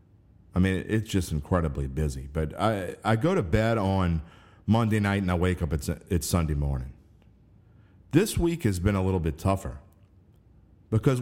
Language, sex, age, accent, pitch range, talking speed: English, male, 50-69, American, 85-110 Hz, 170 wpm